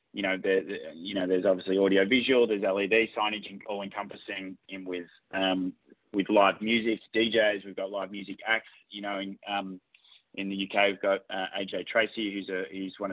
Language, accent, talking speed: English, Australian, 195 wpm